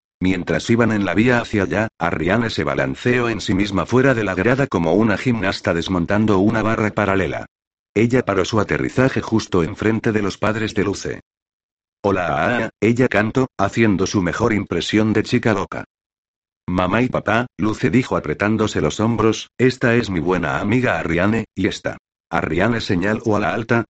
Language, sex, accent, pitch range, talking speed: Spanish, male, Spanish, 95-115 Hz, 170 wpm